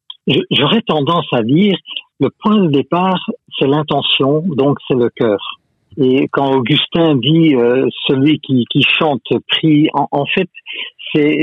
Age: 60-79